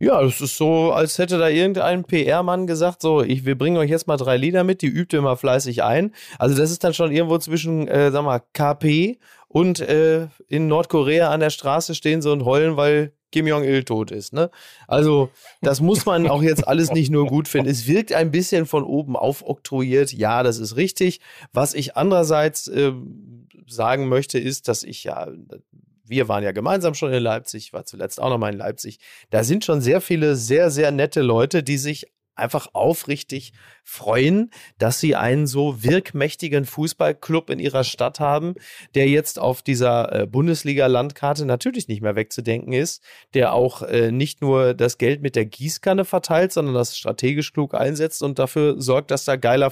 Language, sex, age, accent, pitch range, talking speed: German, male, 30-49, German, 125-160 Hz, 185 wpm